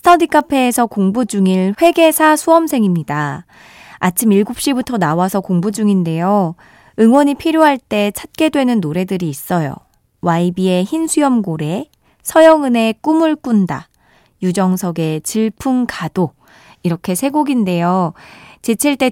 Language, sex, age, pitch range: Korean, female, 20-39, 180-260 Hz